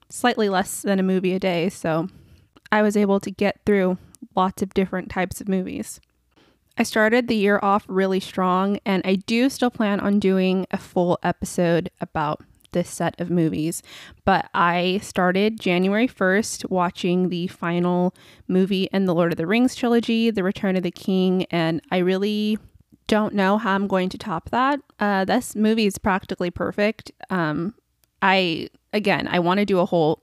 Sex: female